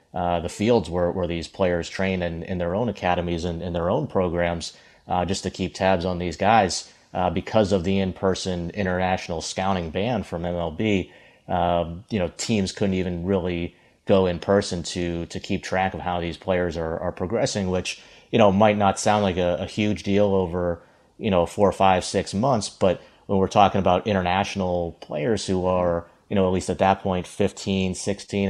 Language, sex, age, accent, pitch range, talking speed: English, male, 30-49, American, 85-100 Hz, 195 wpm